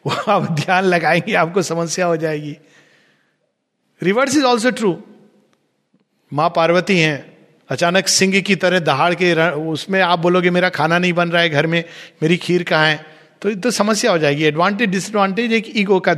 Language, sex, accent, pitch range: Hindi, male, native, 155-210 Hz